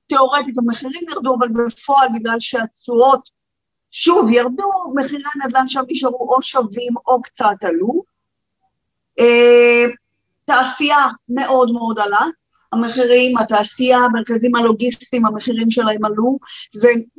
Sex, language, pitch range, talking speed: female, Hebrew, 220-255 Hz, 105 wpm